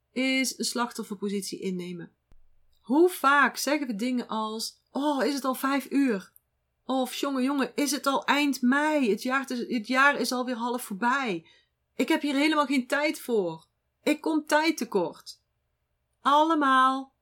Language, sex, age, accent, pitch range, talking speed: Dutch, female, 40-59, Dutch, 225-285 Hz, 150 wpm